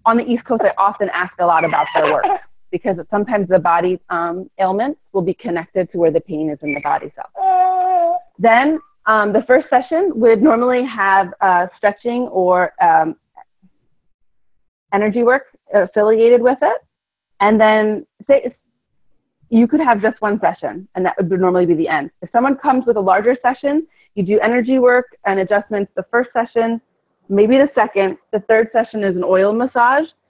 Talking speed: 175 wpm